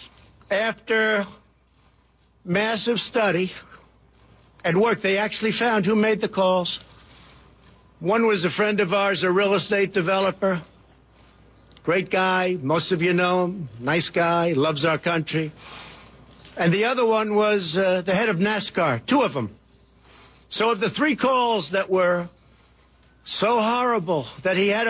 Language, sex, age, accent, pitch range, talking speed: English, male, 60-79, American, 175-215 Hz, 140 wpm